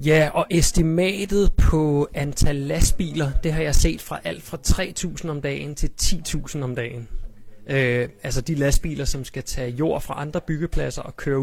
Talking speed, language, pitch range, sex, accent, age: 175 wpm, Danish, 120-150 Hz, male, native, 30-49